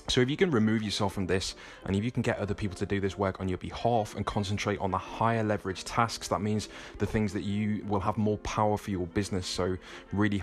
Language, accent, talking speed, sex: English, British, 255 wpm, male